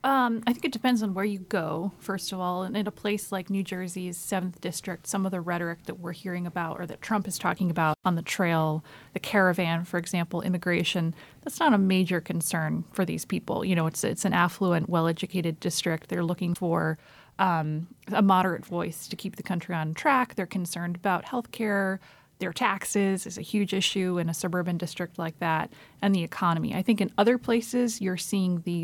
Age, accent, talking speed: 30-49, American, 210 wpm